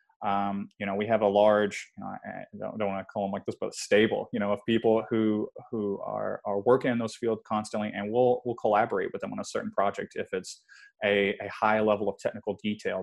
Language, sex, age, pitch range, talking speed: English, male, 20-39, 100-115 Hz, 240 wpm